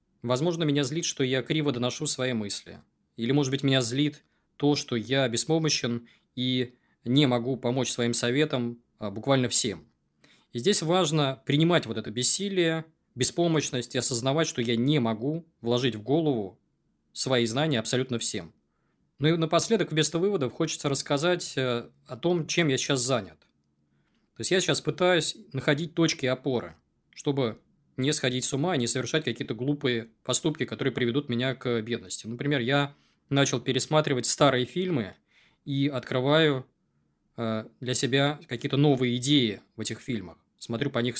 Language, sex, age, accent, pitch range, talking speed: Russian, male, 20-39, native, 115-150 Hz, 150 wpm